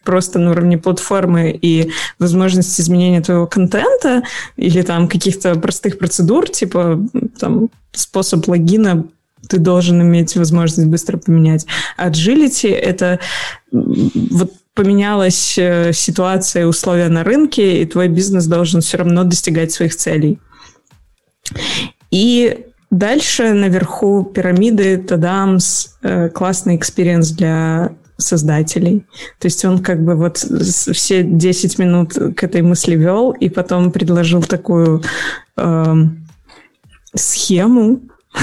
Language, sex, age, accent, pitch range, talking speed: Russian, female, 20-39, native, 170-195 Hz, 105 wpm